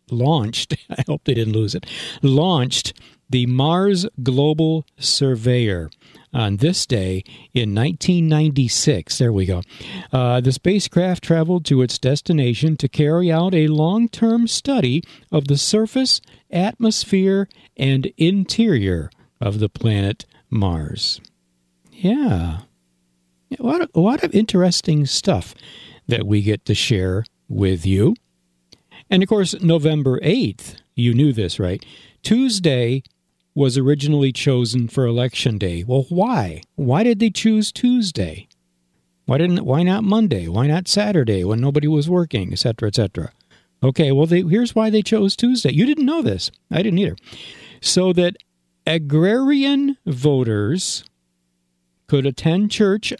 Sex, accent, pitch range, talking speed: male, American, 110-180 Hz, 135 wpm